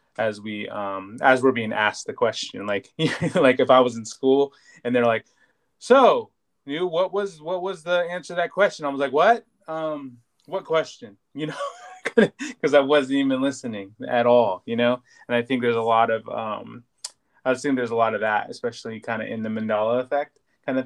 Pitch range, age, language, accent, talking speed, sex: 110-145 Hz, 20-39, English, American, 205 wpm, male